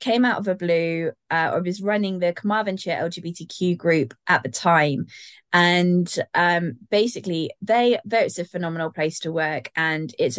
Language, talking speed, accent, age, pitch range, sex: English, 170 wpm, British, 20-39, 160-185 Hz, female